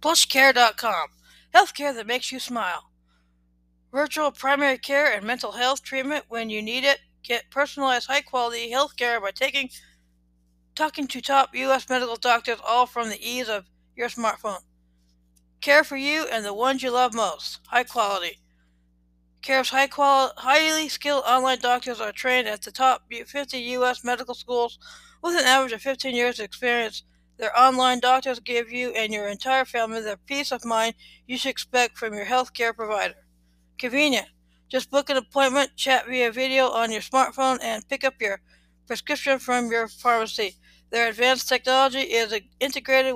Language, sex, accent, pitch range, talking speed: English, female, American, 220-265 Hz, 165 wpm